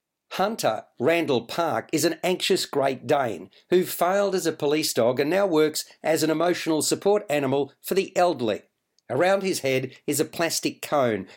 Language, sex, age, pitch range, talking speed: English, male, 50-69, 135-175 Hz, 170 wpm